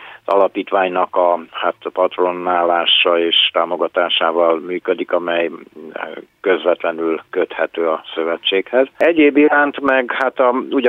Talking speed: 100 wpm